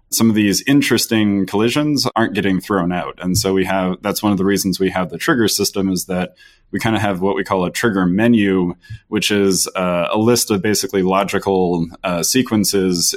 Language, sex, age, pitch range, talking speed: English, male, 20-39, 90-105 Hz, 205 wpm